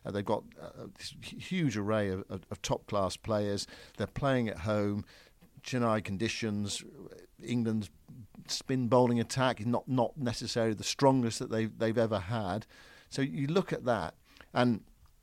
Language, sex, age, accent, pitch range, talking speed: English, male, 50-69, British, 95-130 Hz, 160 wpm